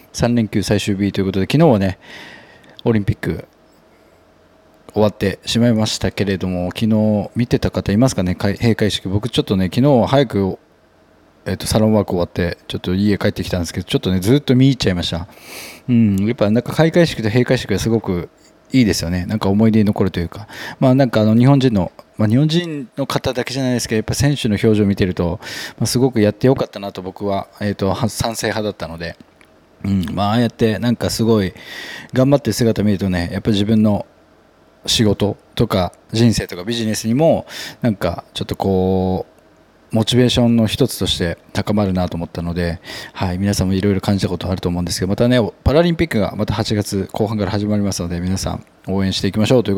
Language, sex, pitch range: Japanese, male, 95-120 Hz